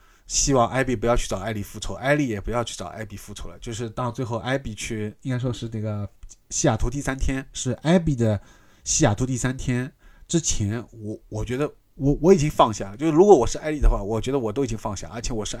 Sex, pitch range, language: male, 105-130 Hz, Chinese